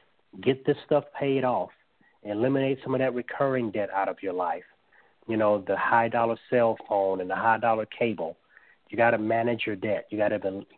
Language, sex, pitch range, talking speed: English, male, 100-130 Hz, 200 wpm